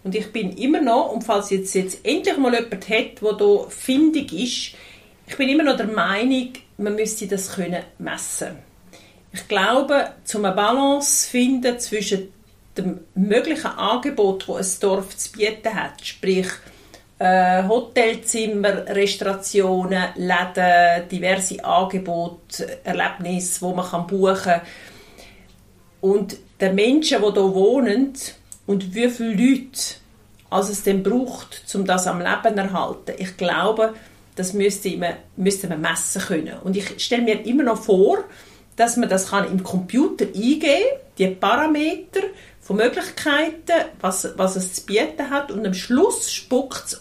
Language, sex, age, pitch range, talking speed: German, female, 40-59, 185-245 Hz, 145 wpm